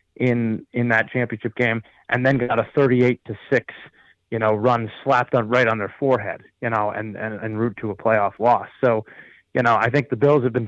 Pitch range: 115-140 Hz